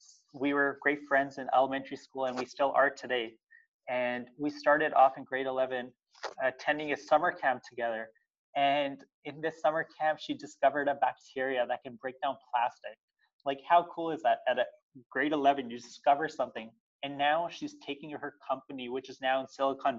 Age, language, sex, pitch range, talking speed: 20-39, English, male, 125-150 Hz, 185 wpm